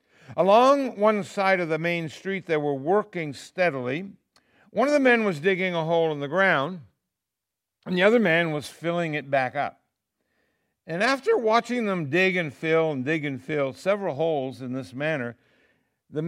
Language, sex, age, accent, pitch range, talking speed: English, male, 60-79, American, 150-195 Hz, 175 wpm